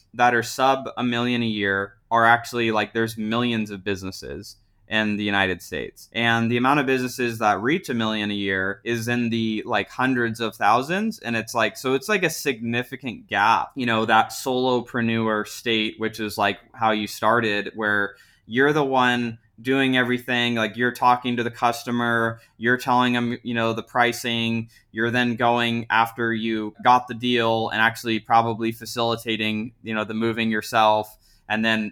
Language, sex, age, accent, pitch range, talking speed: English, male, 20-39, American, 110-120 Hz, 175 wpm